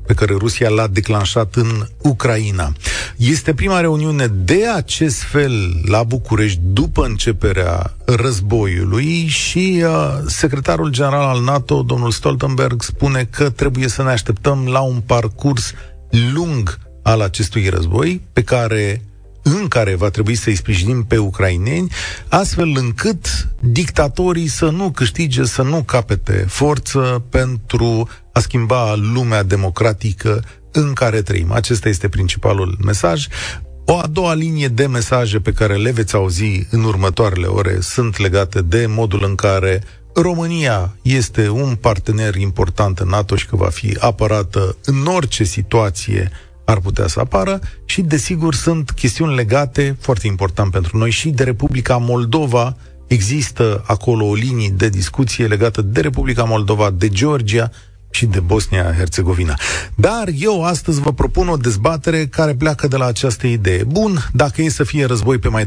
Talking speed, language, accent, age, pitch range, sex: 145 wpm, Romanian, native, 40-59, 100-135 Hz, male